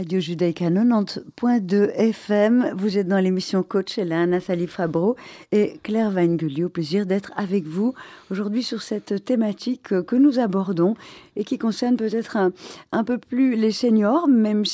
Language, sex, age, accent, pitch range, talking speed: French, female, 50-69, French, 185-220 Hz, 160 wpm